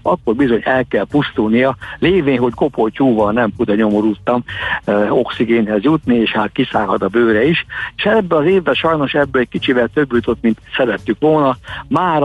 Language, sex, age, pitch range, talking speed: Hungarian, male, 60-79, 110-135 Hz, 170 wpm